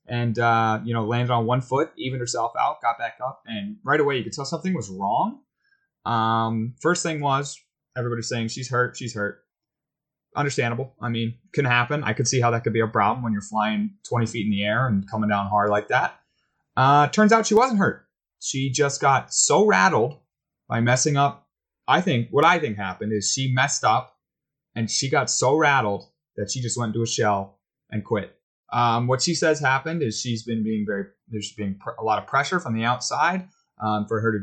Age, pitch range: 20-39, 115-155 Hz